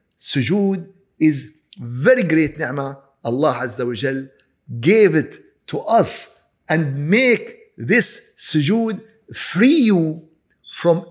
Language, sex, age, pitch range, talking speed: Arabic, male, 50-69, 135-195 Hz, 95 wpm